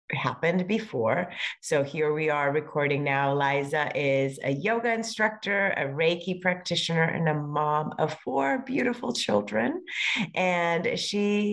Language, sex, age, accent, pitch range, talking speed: English, female, 30-49, American, 145-185 Hz, 130 wpm